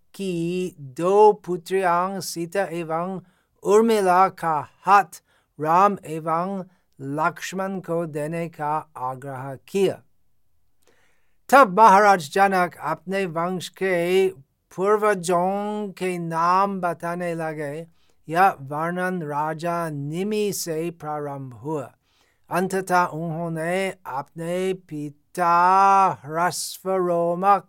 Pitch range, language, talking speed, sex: 150-185 Hz, Hindi, 80 wpm, male